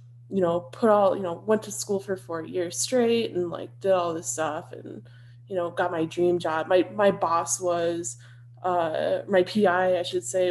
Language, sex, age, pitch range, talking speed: English, female, 20-39, 120-190 Hz, 205 wpm